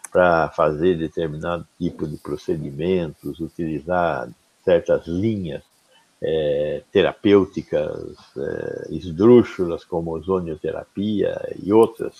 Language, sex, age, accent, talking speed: Portuguese, male, 60-79, Brazilian, 85 wpm